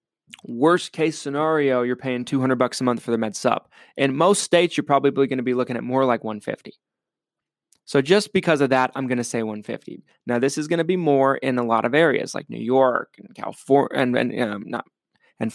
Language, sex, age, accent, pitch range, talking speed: English, male, 20-39, American, 125-155 Hz, 210 wpm